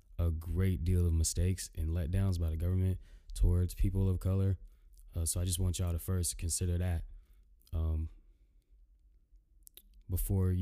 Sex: male